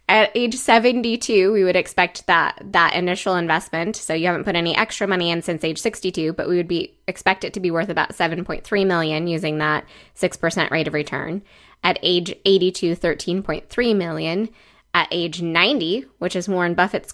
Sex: female